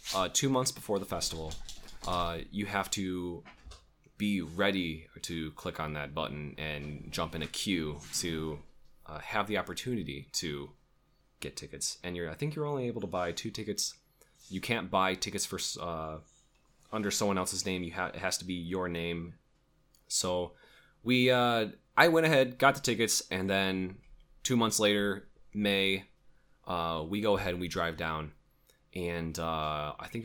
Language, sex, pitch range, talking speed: English, male, 85-115 Hz, 170 wpm